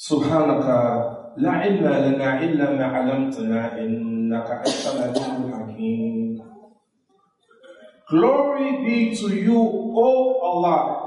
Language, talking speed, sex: English, 65 wpm, male